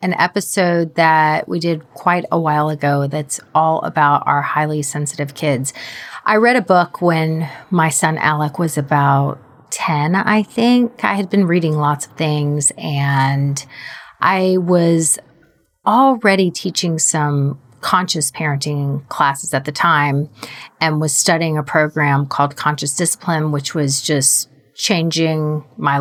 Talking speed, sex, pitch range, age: 140 wpm, female, 145-175 Hz, 40-59